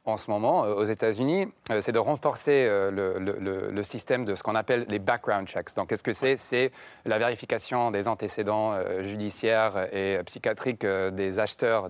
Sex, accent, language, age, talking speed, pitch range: male, French, French, 30-49, 175 wpm, 100-120 Hz